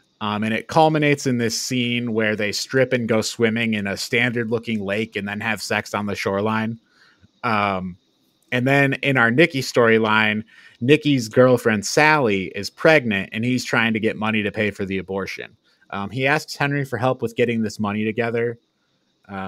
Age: 30-49